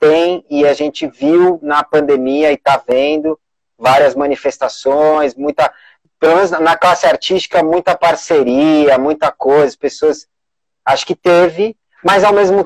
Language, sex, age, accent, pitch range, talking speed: Portuguese, male, 20-39, Brazilian, 140-180 Hz, 140 wpm